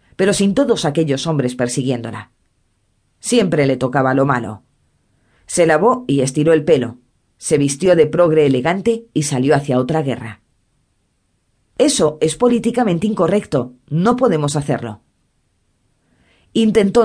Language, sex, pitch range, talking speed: Spanish, female, 125-180 Hz, 125 wpm